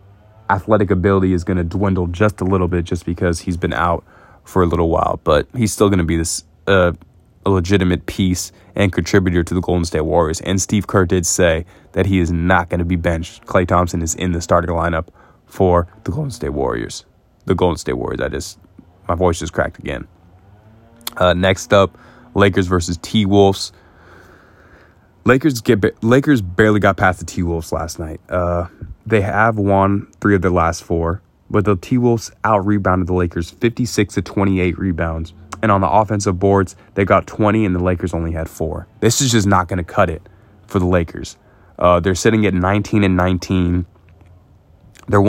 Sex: male